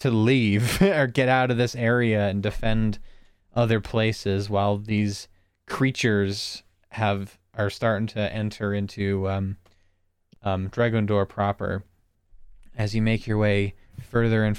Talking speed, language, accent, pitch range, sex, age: 135 wpm, English, American, 95-110 Hz, male, 20-39